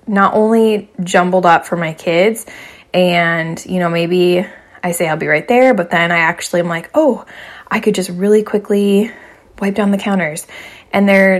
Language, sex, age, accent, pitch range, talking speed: English, female, 20-39, American, 180-215 Hz, 185 wpm